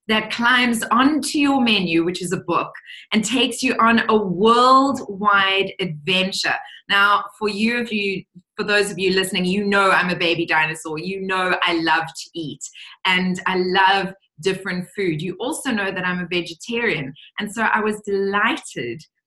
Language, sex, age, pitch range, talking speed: English, female, 20-39, 180-235 Hz, 170 wpm